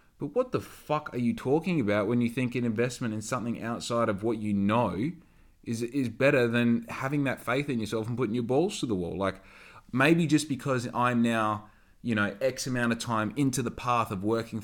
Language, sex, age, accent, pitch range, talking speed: English, male, 20-39, Australian, 105-125 Hz, 215 wpm